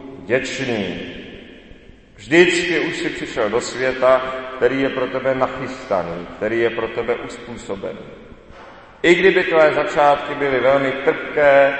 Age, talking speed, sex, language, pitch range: 40-59, 120 wpm, male, Czech, 130-160 Hz